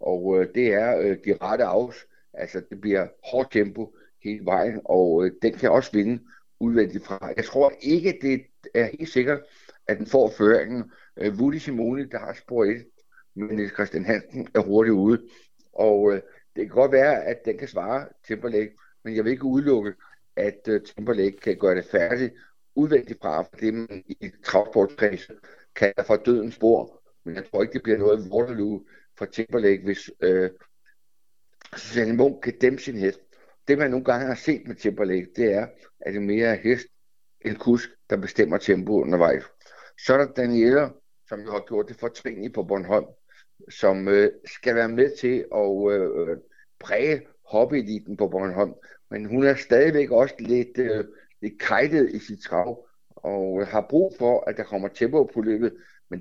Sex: male